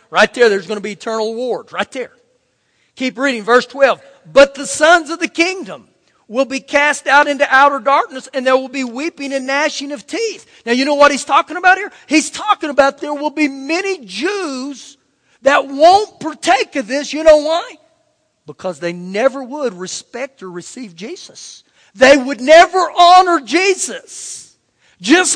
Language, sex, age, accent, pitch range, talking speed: English, male, 40-59, American, 225-310 Hz, 175 wpm